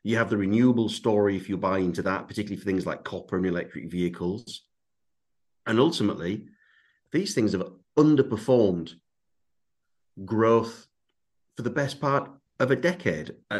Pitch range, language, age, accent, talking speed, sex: 95-115 Hz, English, 40-59, British, 140 wpm, male